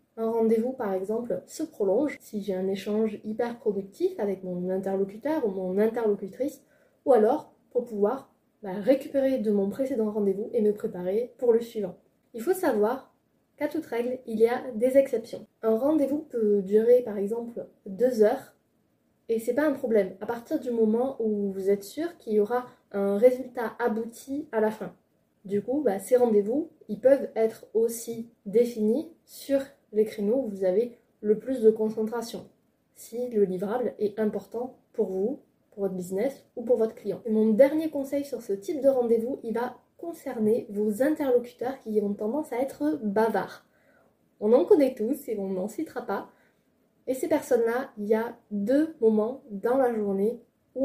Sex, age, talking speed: female, 20-39, 175 wpm